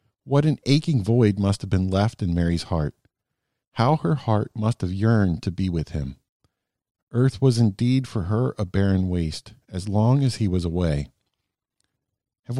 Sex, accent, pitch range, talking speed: male, American, 95-125 Hz, 170 wpm